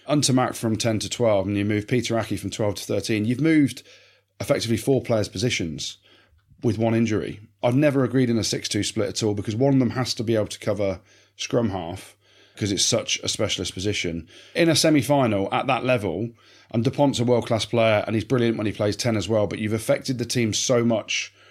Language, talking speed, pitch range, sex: English, 215 wpm, 100-120 Hz, male